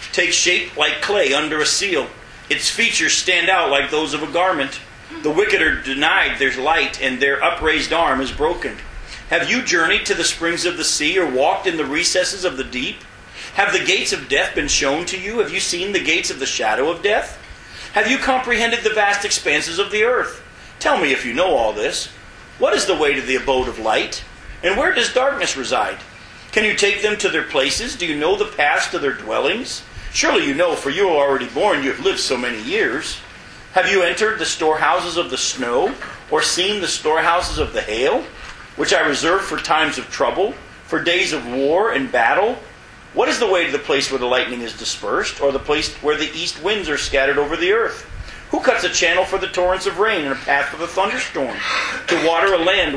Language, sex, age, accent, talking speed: English, male, 40-59, American, 220 wpm